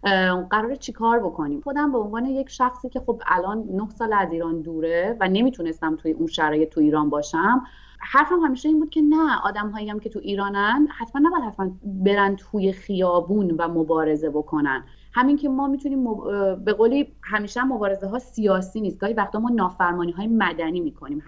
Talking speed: 185 wpm